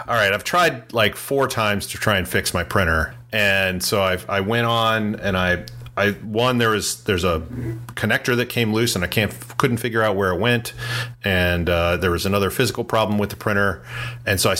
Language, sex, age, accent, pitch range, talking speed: English, male, 40-59, American, 95-120 Hz, 220 wpm